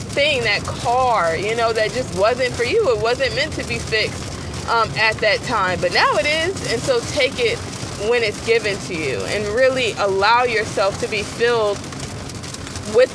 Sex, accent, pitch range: female, American, 200-255 Hz